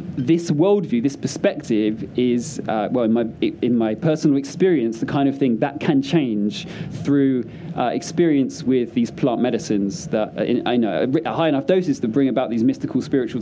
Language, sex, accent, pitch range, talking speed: English, male, British, 120-170 Hz, 175 wpm